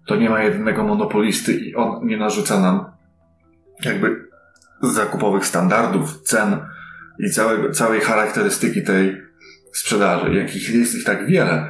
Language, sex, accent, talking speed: Polish, male, native, 135 wpm